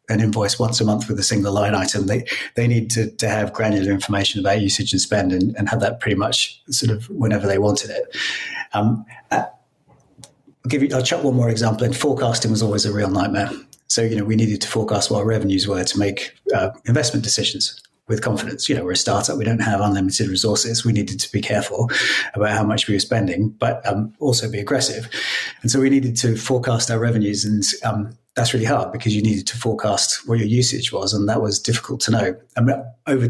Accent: British